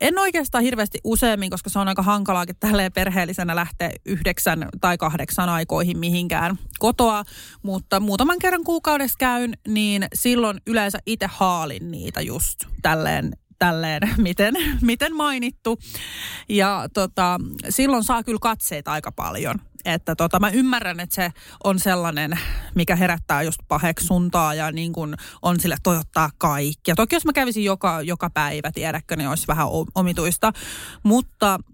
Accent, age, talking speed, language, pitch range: native, 30-49, 145 wpm, Finnish, 175-225 Hz